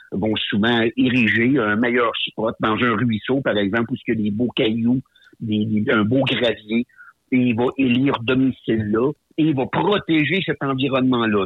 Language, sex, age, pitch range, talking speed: French, male, 60-79, 110-130 Hz, 180 wpm